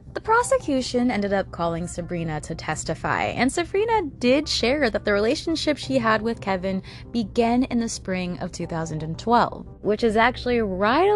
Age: 20-39